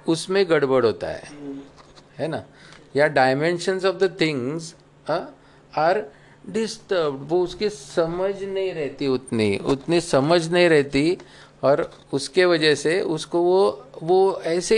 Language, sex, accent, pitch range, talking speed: Hindi, male, native, 140-185 Hz, 125 wpm